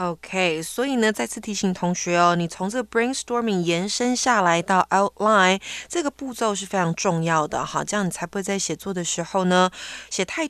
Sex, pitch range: female, 185-275 Hz